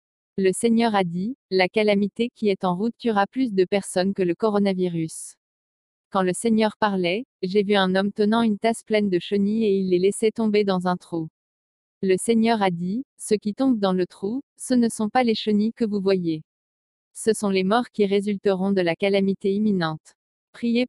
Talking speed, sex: 220 wpm, female